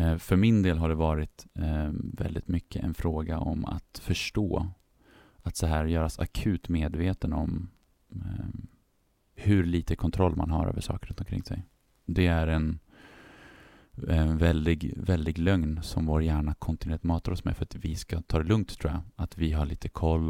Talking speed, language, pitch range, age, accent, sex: 170 wpm, Swedish, 80-95 Hz, 30-49, native, male